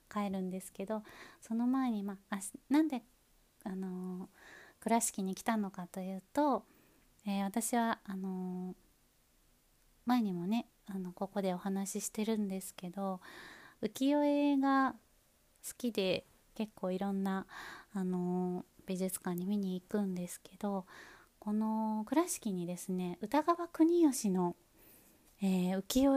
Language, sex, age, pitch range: Japanese, female, 20-39, 185-245 Hz